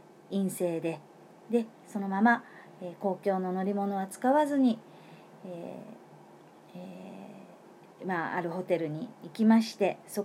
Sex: female